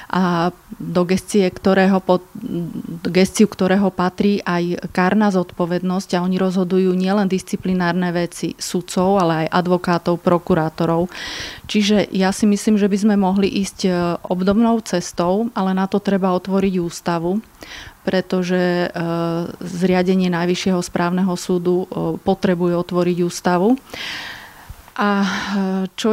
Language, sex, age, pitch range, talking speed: Slovak, female, 30-49, 180-200 Hz, 115 wpm